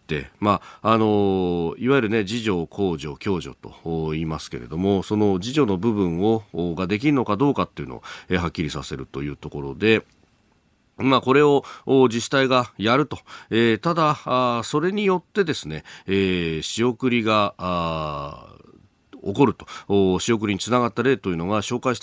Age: 40-59